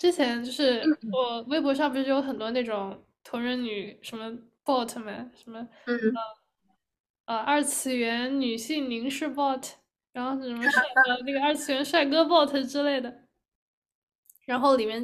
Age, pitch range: 10-29, 235-285 Hz